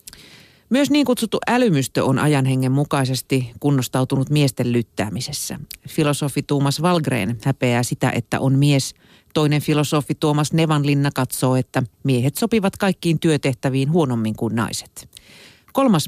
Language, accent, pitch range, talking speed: Finnish, native, 125-155 Hz, 120 wpm